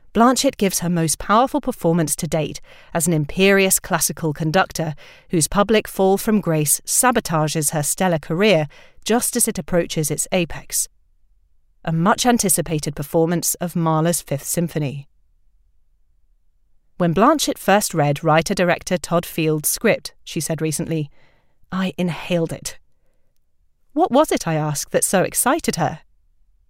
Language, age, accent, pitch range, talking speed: English, 40-59, British, 150-195 Hz, 130 wpm